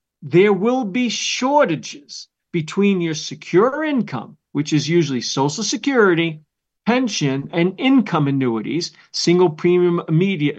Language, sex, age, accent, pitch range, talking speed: English, male, 50-69, American, 160-230 Hz, 115 wpm